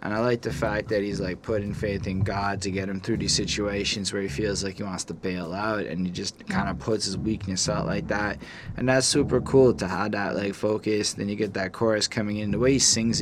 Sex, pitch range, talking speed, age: male, 100-115 Hz, 265 wpm, 20-39